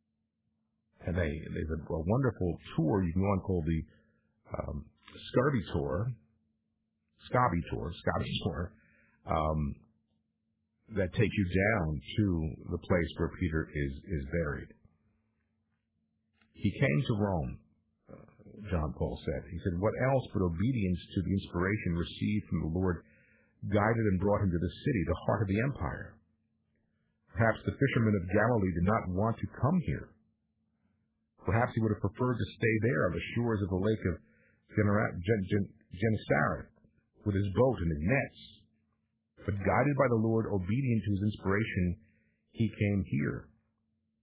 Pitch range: 90-110 Hz